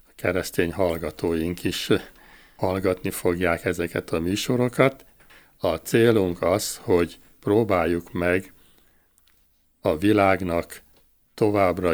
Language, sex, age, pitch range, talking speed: Hungarian, male, 60-79, 85-100 Hz, 85 wpm